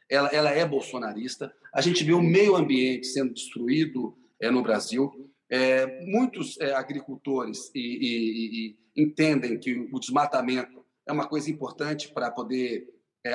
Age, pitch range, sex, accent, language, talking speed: 40-59, 135-190 Hz, male, Brazilian, Portuguese, 150 wpm